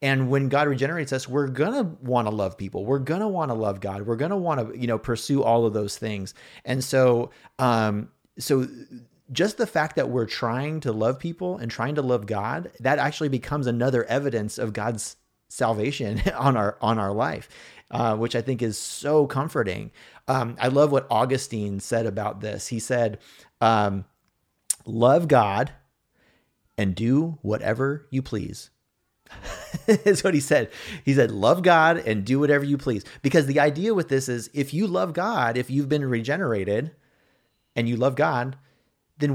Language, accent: English, American